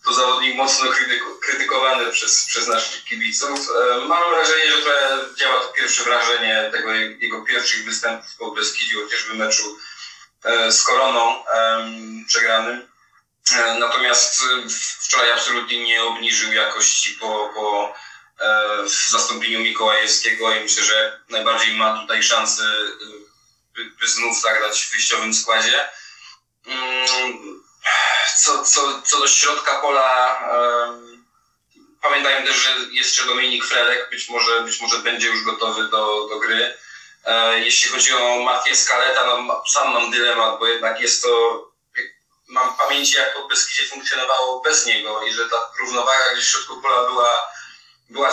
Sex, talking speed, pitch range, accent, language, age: male, 145 wpm, 110-130 Hz, native, Polish, 20-39